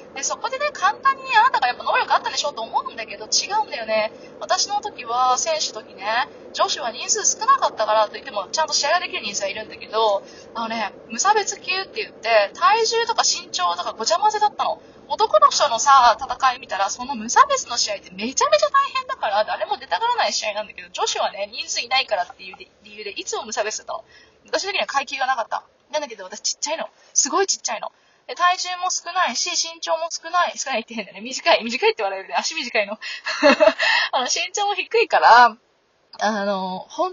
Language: Japanese